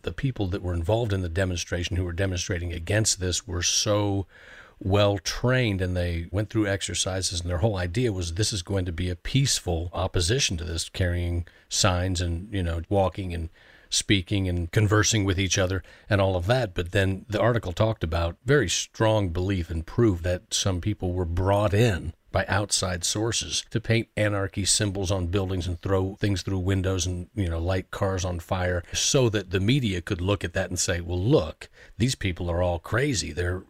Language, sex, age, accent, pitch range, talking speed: English, male, 40-59, American, 90-105 Hz, 195 wpm